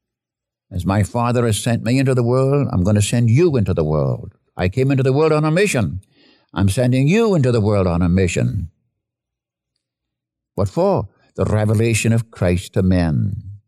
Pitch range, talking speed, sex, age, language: 100-145 Hz, 185 wpm, male, 60-79, English